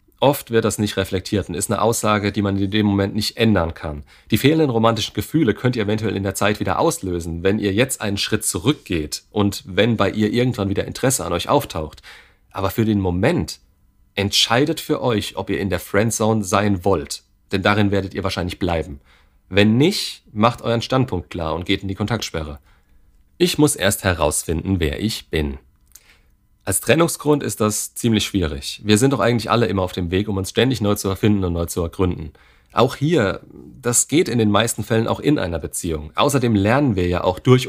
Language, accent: German, German